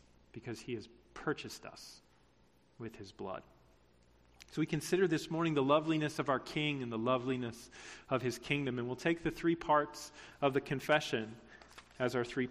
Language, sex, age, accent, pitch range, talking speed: English, male, 40-59, American, 110-145 Hz, 175 wpm